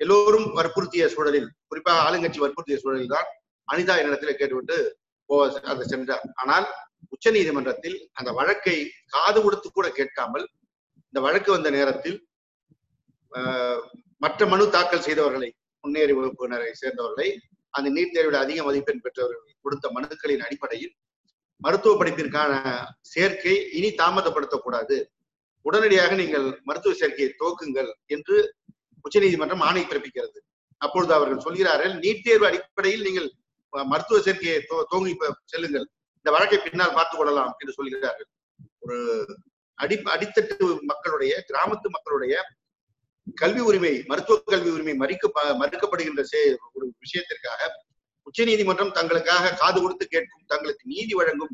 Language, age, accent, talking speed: Tamil, 50-69, native, 115 wpm